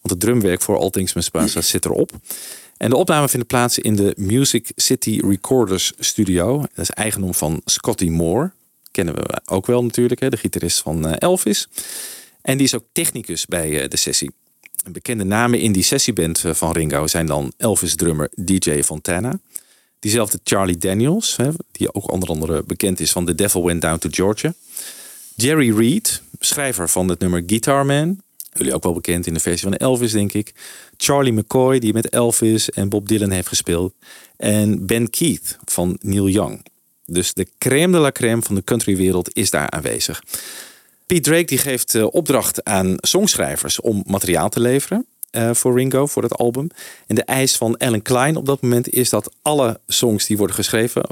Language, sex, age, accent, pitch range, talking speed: Dutch, male, 40-59, Dutch, 90-125 Hz, 175 wpm